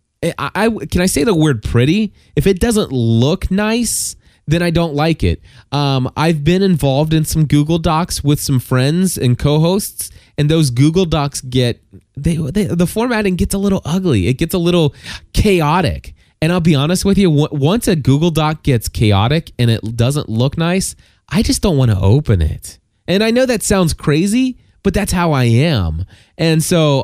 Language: English